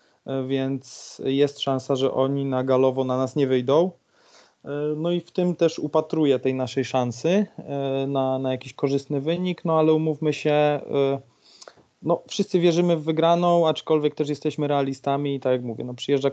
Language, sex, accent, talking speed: Polish, male, native, 160 wpm